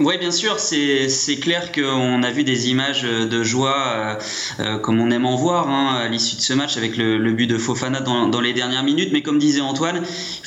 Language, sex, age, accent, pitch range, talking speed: French, male, 20-39, French, 120-145 Hz, 230 wpm